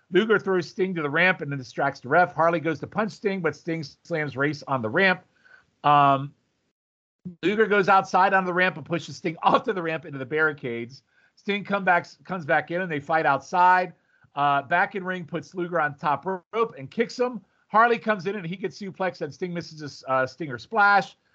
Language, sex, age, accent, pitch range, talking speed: English, male, 40-59, American, 140-180 Hz, 205 wpm